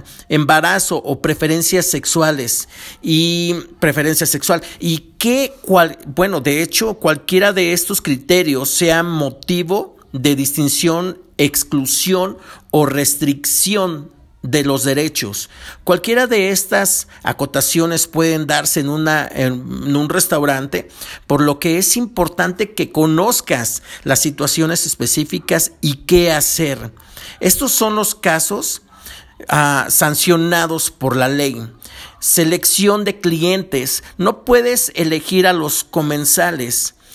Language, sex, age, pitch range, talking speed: Spanish, male, 50-69, 140-175 Hz, 110 wpm